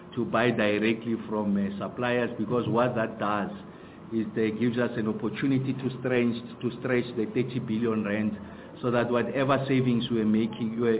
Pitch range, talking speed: 105-120 Hz, 170 wpm